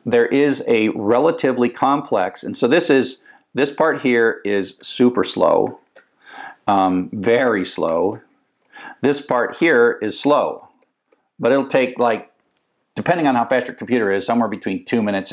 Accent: American